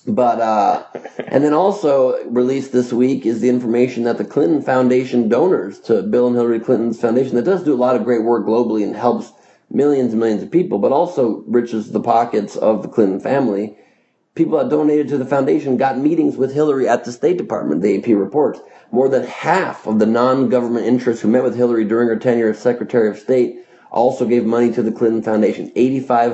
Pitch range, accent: 115-130 Hz, American